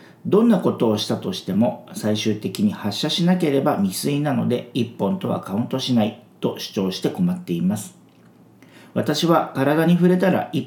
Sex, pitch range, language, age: male, 110-160 Hz, Japanese, 50-69